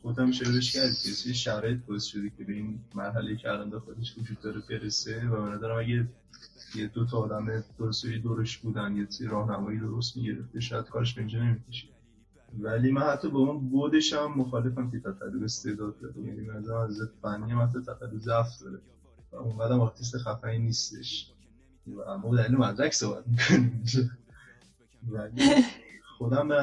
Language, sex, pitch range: Persian, male, 110-125 Hz